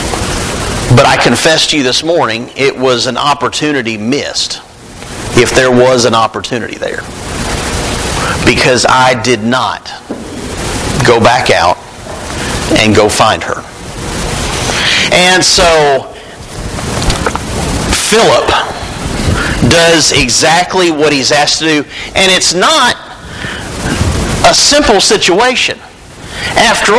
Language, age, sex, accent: English, 50-69, male, American